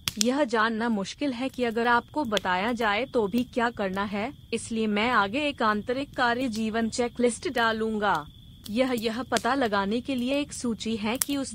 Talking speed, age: 180 wpm, 30-49